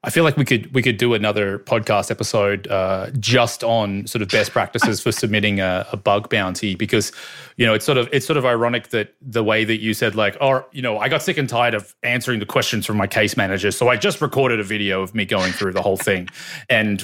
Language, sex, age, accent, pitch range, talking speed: English, male, 20-39, Australian, 100-120 Hz, 255 wpm